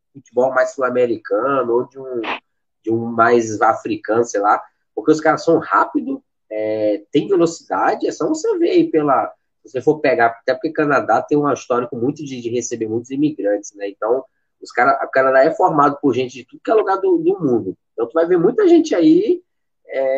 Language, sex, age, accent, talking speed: Portuguese, male, 20-39, Brazilian, 205 wpm